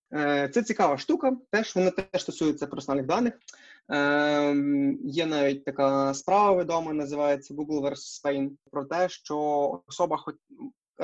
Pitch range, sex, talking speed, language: 150-195 Hz, male, 130 wpm, Ukrainian